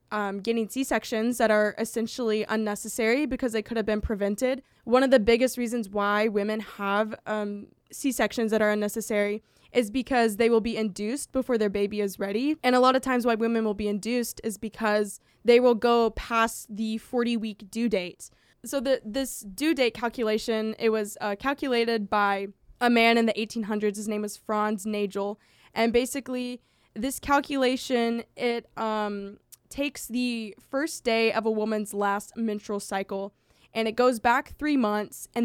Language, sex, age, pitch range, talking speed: English, female, 20-39, 210-245 Hz, 170 wpm